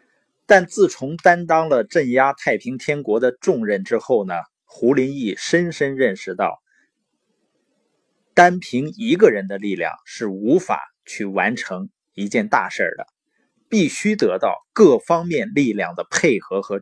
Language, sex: Chinese, male